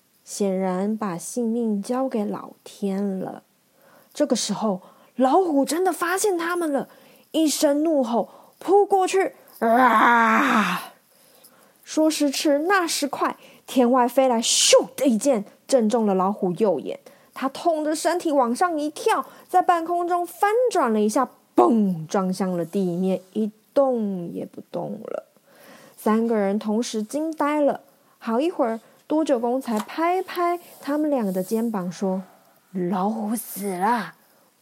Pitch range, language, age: 210-295 Hz, Chinese, 30-49